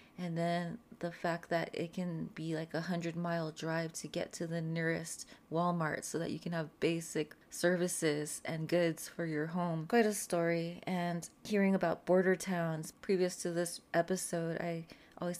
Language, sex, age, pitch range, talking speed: English, female, 20-39, 155-175 Hz, 175 wpm